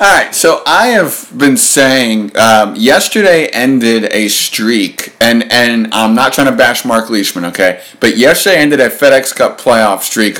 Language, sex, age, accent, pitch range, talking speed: English, male, 50-69, American, 110-140 Hz, 175 wpm